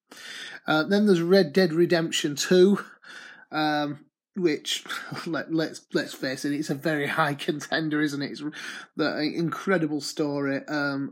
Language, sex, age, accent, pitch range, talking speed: English, male, 30-49, British, 140-175 Hz, 145 wpm